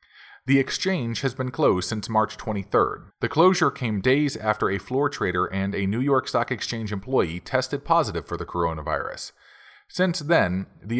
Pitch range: 105-140 Hz